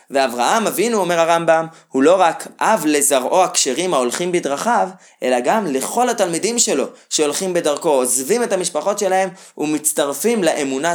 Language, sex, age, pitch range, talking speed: Hebrew, male, 20-39, 135-210 Hz, 135 wpm